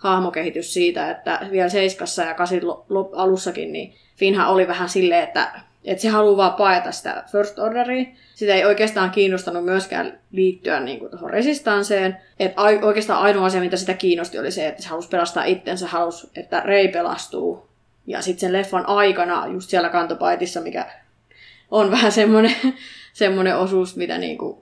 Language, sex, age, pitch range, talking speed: Finnish, female, 20-39, 180-215 Hz, 160 wpm